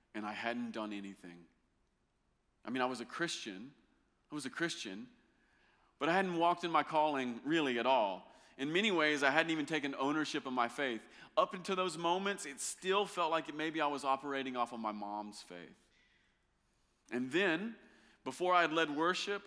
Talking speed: 185 wpm